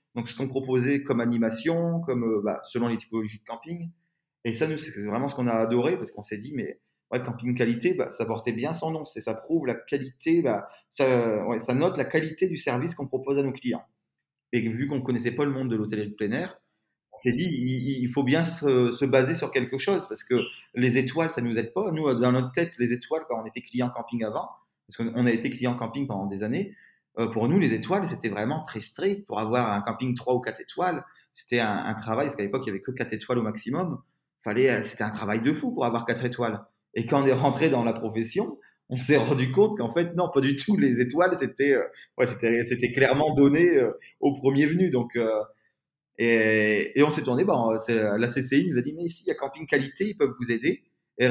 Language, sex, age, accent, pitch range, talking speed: French, male, 30-49, French, 115-145 Hz, 245 wpm